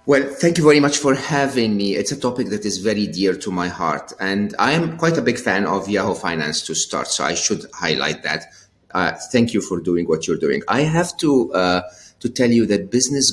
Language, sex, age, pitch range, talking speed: English, male, 30-49, 90-115 Hz, 230 wpm